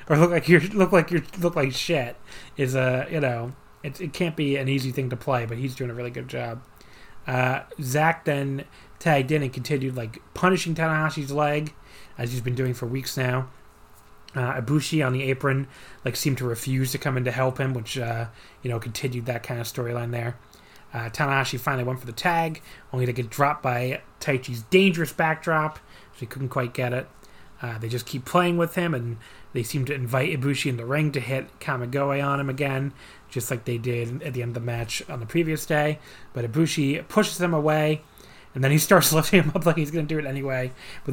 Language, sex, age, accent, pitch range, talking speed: English, male, 30-49, American, 120-150 Hz, 220 wpm